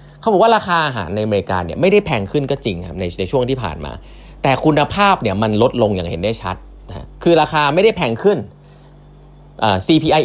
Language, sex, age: Thai, male, 20-39